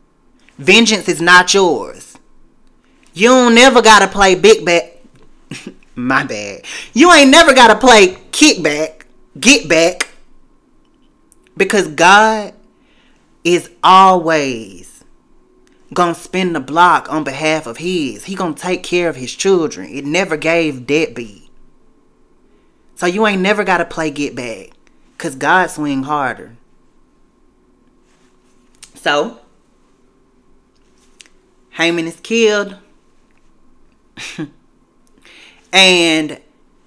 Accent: American